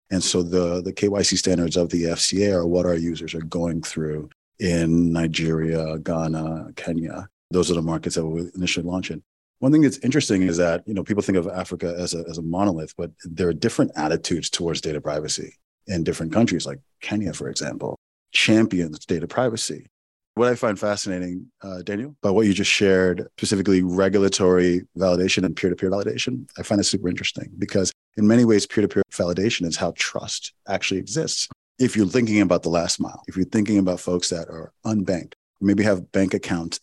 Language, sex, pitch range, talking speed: English, male, 85-100 Hz, 190 wpm